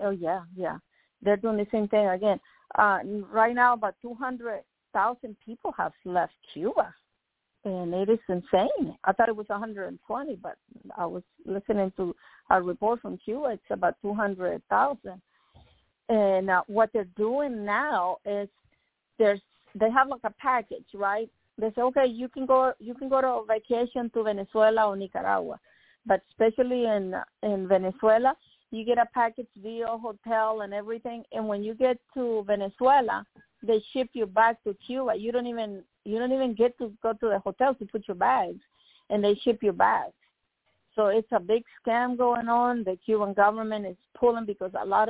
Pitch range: 200-235 Hz